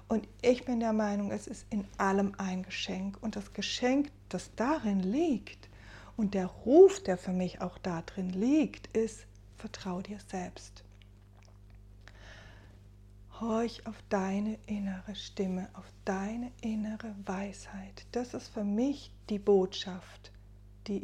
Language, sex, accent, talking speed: German, female, German, 130 wpm